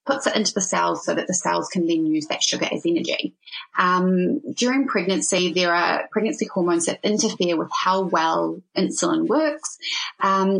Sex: female